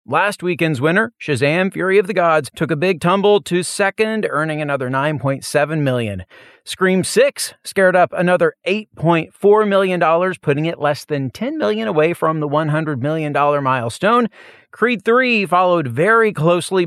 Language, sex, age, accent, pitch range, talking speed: English, male, 40-59, American, 140-190 Hz, 150 wpm